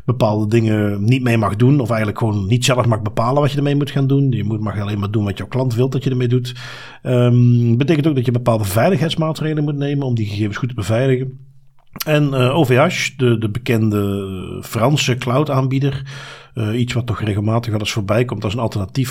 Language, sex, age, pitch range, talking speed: Dutch, male, 50-69, 115-145 Hz, 205 wpm